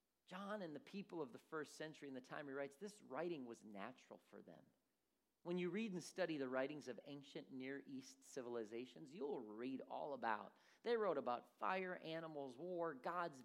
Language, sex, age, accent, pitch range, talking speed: English, male, 40-59, American, 125-180 Hz, 185 wpm